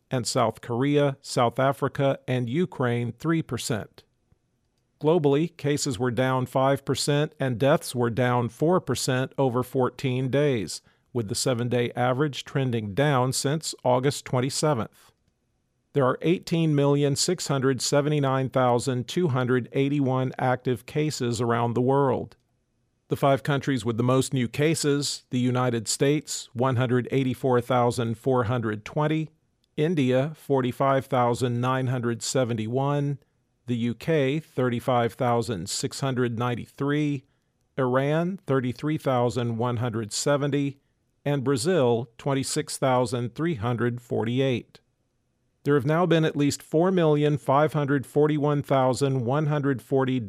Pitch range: 125-145 Hz